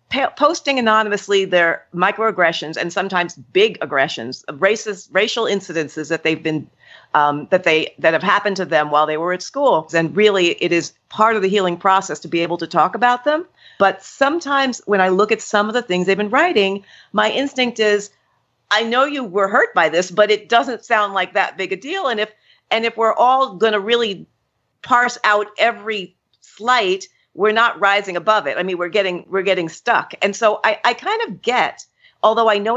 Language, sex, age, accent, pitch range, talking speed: English, female, 50-69, American, 180-235 Hz, 200 wpm